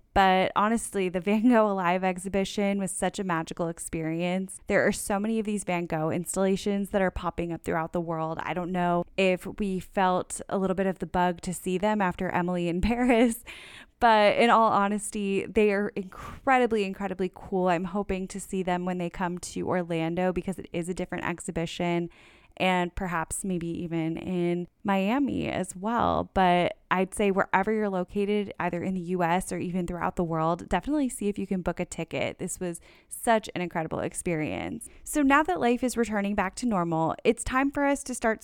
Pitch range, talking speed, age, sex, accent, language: 180-210 Hz, 195 wpm, 10-29, female, American, English